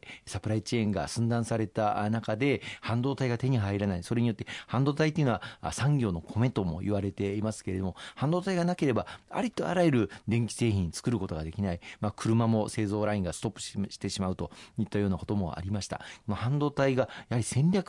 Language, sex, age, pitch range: Japanese, male, 40-59, 100-130 Hz